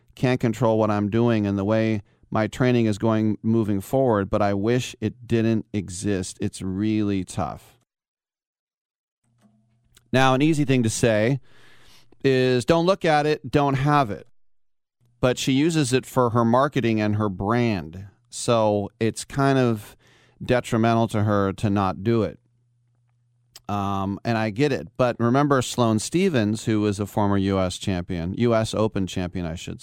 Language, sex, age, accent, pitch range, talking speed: English, male, 40-59, American, 100-125 Hz, 155 wpm